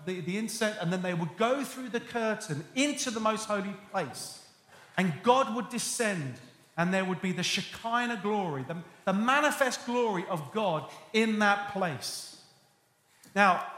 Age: 40-59